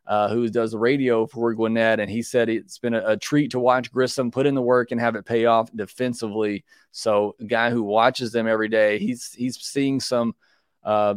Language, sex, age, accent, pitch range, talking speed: English, male, 30-49, American, 110-130 Hz, 220 wpm